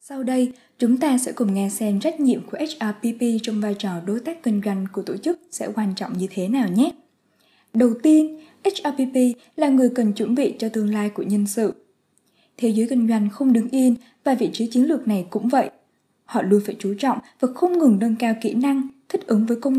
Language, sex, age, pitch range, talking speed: Vietnamese, female, 20-39, 210-260 Hz, 225 wpm